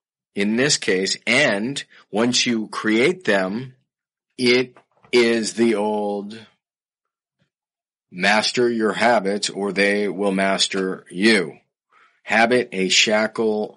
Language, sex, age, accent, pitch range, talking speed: English, male, 40-59, American, 95-115 Hz, 100 wpm